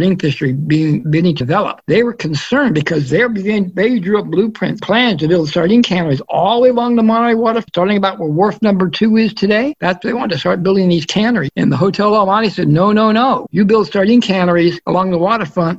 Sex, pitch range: male, 165-220 Hz